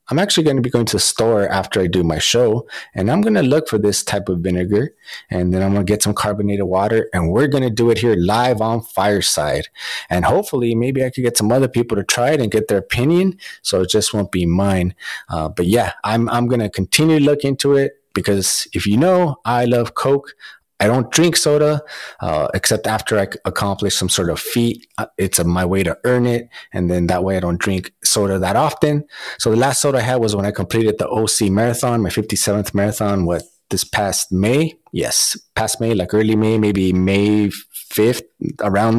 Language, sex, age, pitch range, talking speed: English, male, 30-49, 95-120 Hz, 220 wpm